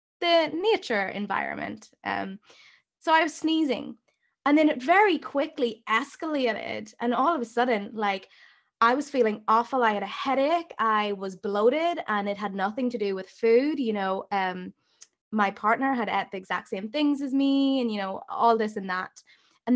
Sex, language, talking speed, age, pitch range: female, English, 180 wpm, 20-39, 200-265 Hz